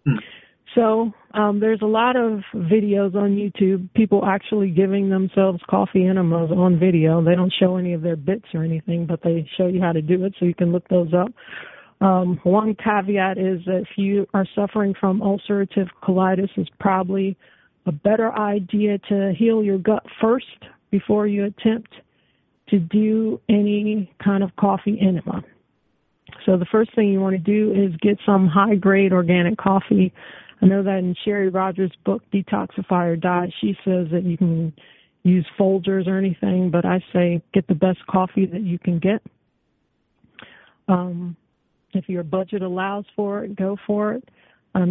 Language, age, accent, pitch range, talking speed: English, 40-59, American, 185-205 Hz, 170 wpm